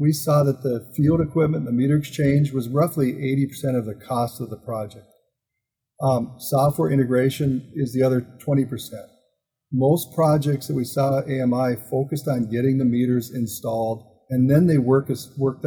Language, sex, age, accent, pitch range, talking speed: English, male, 50-69, American, 125-145 Hz, 160 wpm